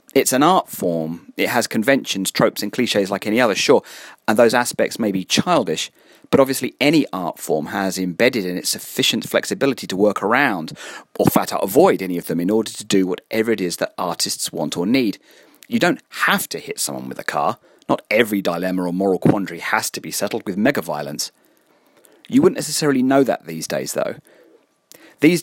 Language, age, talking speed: English, 40-59, 200 wpm